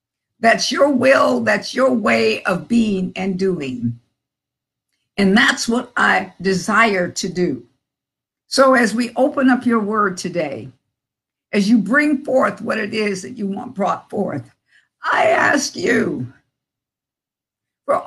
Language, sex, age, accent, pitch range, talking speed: English, female, 50-69, American, 190-255 Hz, 135 wpm